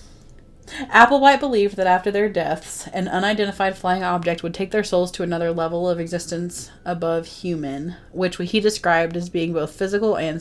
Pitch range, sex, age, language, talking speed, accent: 170-205 Hz, female, 30-49, English, 165 wpm, American